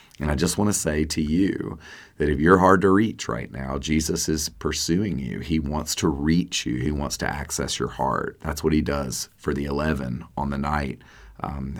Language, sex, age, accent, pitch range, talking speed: English, male, 40-59, American, 75-95 Hz, 215 wpm